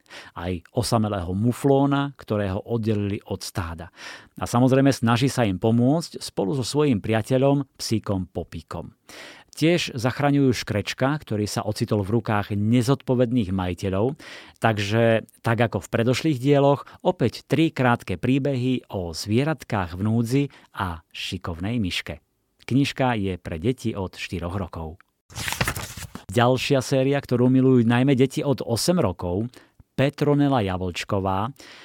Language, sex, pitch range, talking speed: Slovak, male, 100-135 Hz, 120 wpm